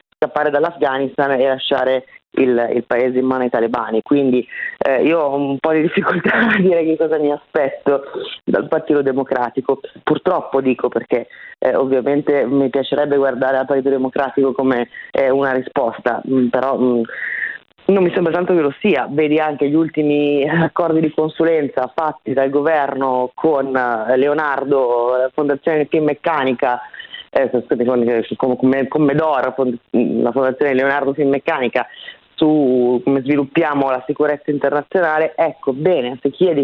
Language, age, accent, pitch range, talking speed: Italian, 20-39, native, 135-165 Hz, 140 wpm